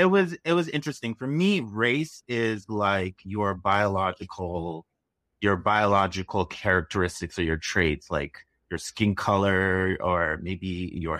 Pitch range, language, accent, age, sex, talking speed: 95-120 Hz, English, American, 30-49, male, 135 wpm